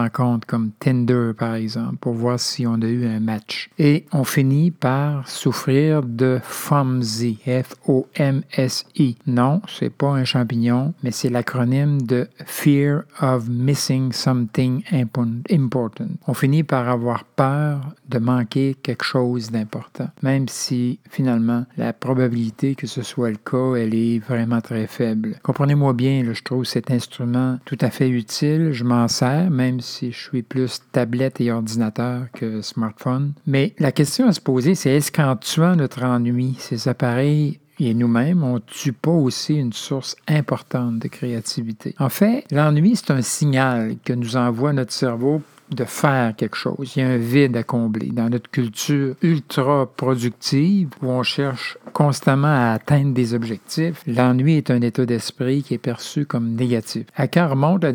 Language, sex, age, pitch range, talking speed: French, male, 50-69, 120-145 Hz, 165 wpm